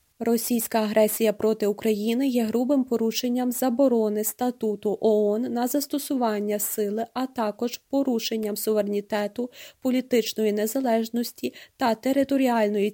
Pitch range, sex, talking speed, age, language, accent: 220-255 Hz, female, 95 wpm, 20-39, Ukrainian, native